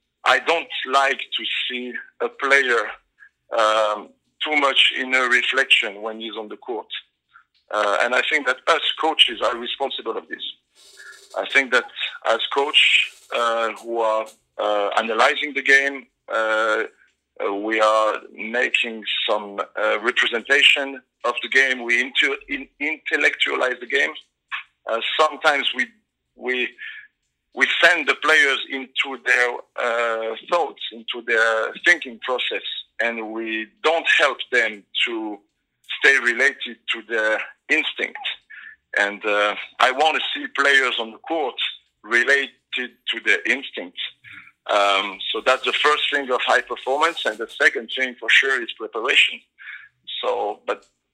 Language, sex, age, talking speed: English, male, 50-69, 135 wpm